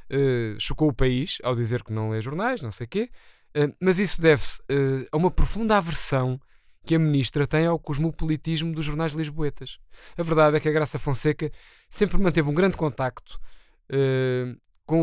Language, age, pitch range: Portuguese, 20-39, 130-160 Hz